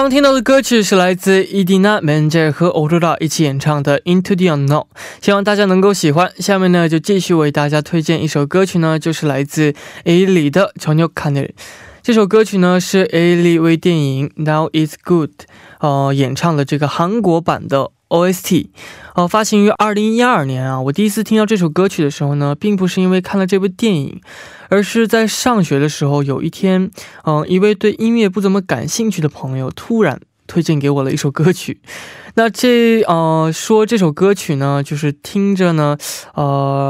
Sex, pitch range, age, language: male, 150-200 Hz, 20-39, Korean